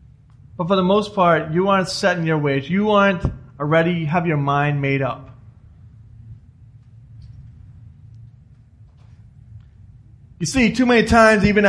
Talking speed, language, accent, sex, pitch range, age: 130 wpm, English, American, male, 120-180 Hz, 30-49